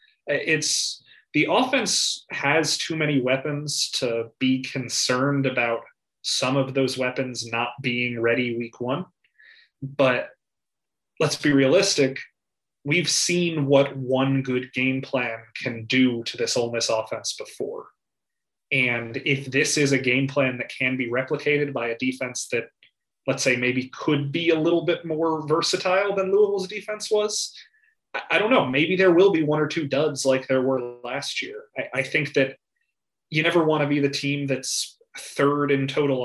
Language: English